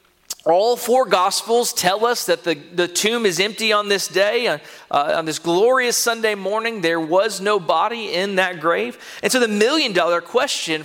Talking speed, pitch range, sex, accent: 190 wpm, 185-265 Hz, male, American